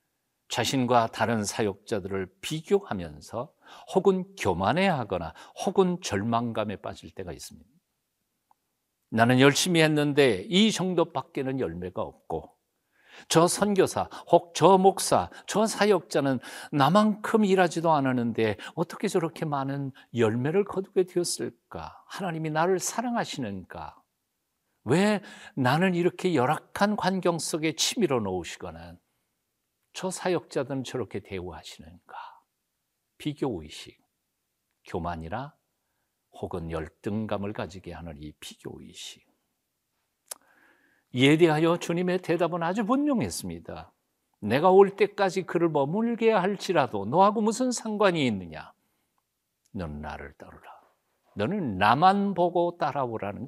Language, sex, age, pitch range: Korean, male, 50-69, 115-190 Hz